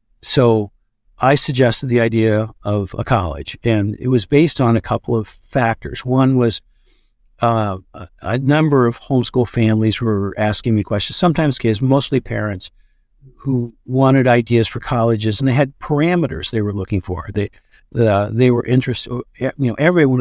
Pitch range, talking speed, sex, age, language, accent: 105-130 Hz, 160 wpm, male, 50-69, English, American